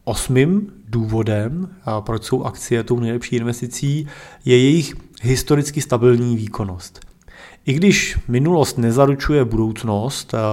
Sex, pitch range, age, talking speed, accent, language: male, 115-130 Hz, 30-49, 105 wpm, native, Czech